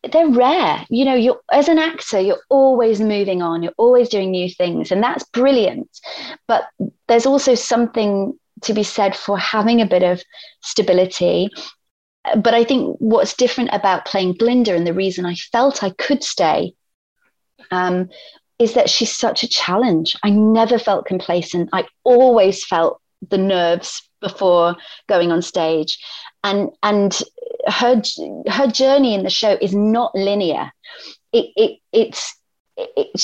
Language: English